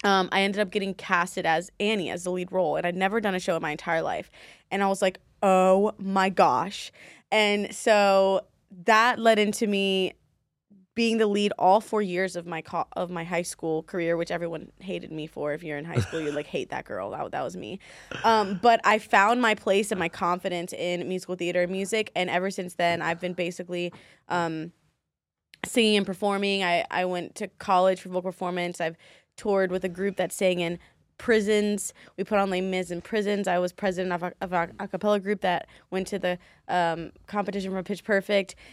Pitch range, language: 180-205 Hz, English